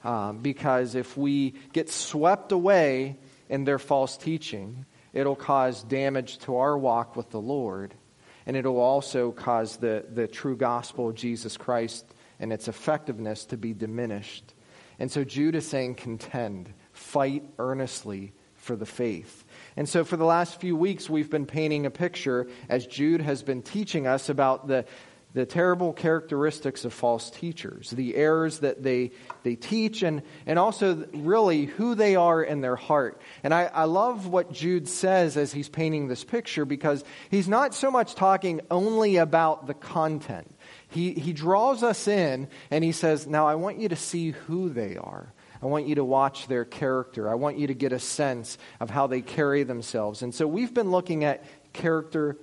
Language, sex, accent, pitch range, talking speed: English, male, American, 125-165 Hz, 175 wpm